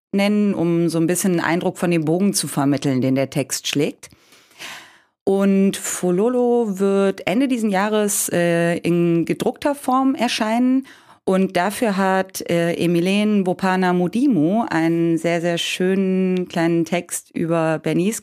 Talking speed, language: 135 wpm, German